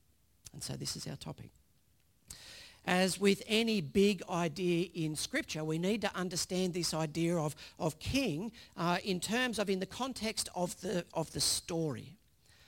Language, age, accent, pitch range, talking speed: English, 50-69, Australian, 140-190 Hz, 155 wpm